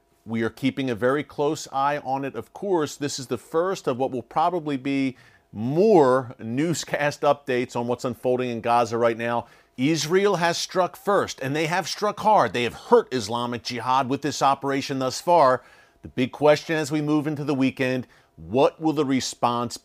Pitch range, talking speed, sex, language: 115-145 Hz, 185 wpm, male, English